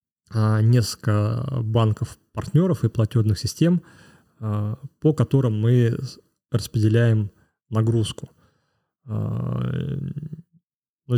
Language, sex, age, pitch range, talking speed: Russian, male, 30-49, 110-130 Hz, 60 wpm